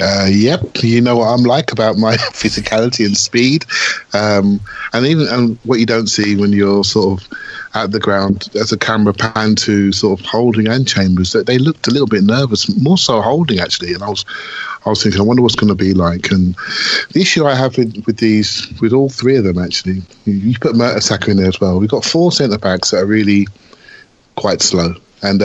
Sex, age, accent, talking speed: male, 30-49, British, 215 wpm